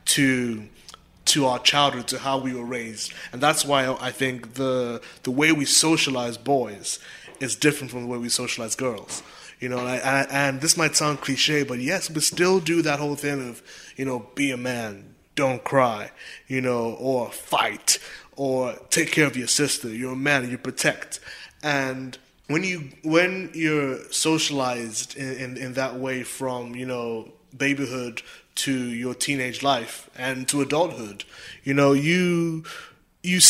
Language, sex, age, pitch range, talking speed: English, male, 20-39, 125-150 Hz, 170 wpm